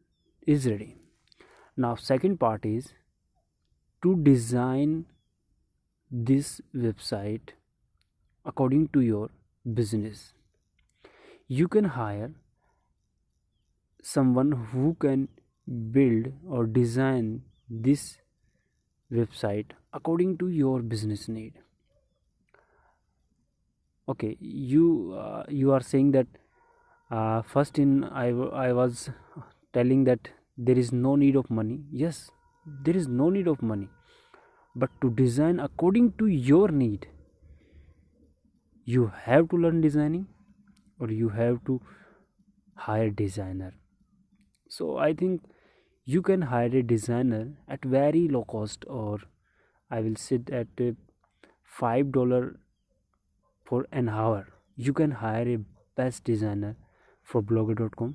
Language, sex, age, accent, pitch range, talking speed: Hindi, male, 30-49, native, 110-140 Hz, 110 wpm